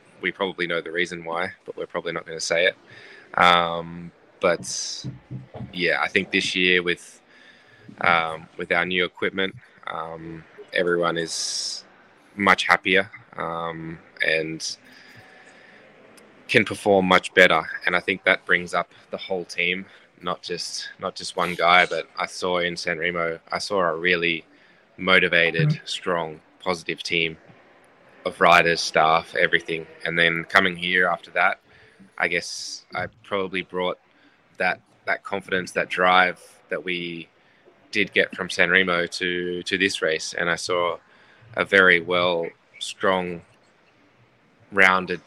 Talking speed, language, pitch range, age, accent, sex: 140 wpm, English, 85-95 Hz, 10-29, Australian, male